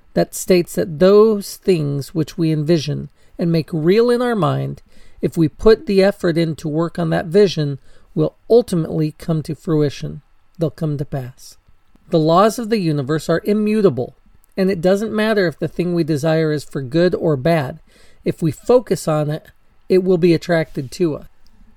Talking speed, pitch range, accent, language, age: 180 wpm, 155-185 Hz, American, English, 40-59